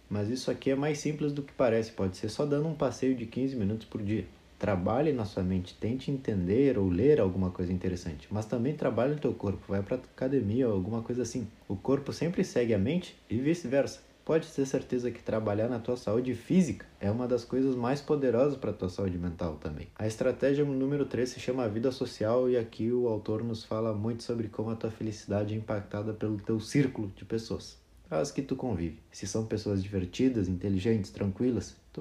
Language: Portuguese